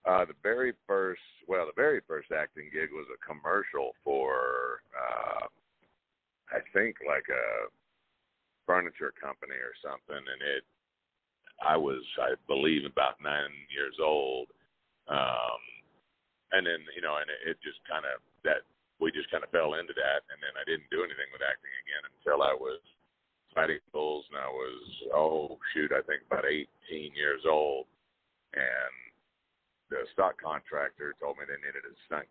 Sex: male